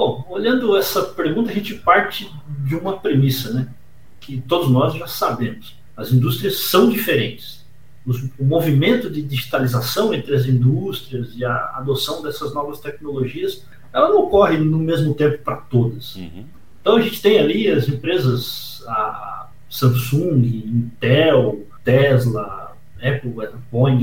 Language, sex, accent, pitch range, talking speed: Portuguese, male, Brazilian, 130-160 Hz, 135 wpm